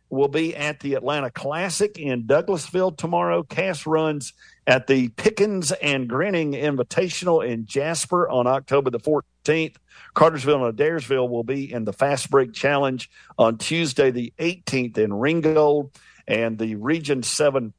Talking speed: 140 wpm